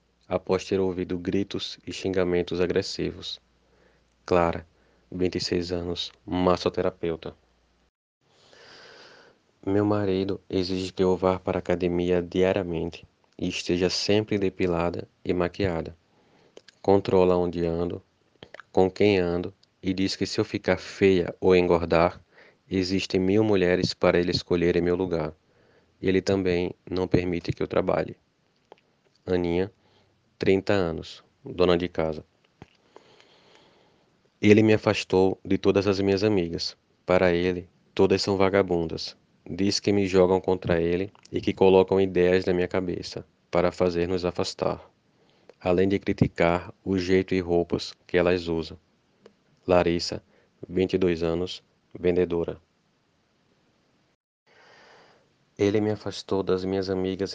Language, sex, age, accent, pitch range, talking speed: Portuguese, male, 20-39, Brazilian, 85-95 Hz, 120 wpm